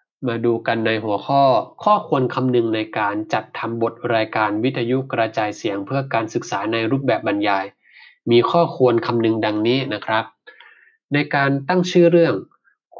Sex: male